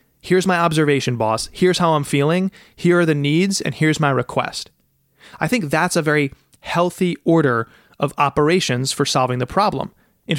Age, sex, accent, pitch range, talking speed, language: 30-49, male, American, 135-175 Hz, 175 wpm, English